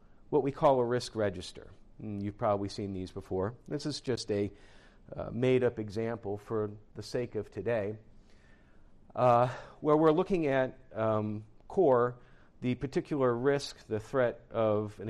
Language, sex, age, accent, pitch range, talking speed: English, male, 50-69, American, 105-135 Hz, 145 wpm